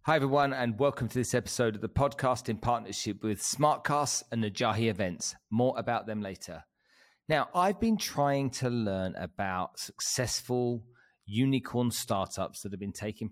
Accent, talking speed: British, 160 wpm